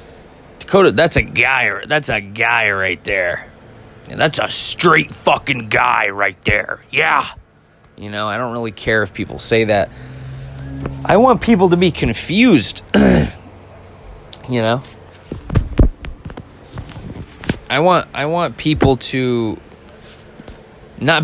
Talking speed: 120 wpm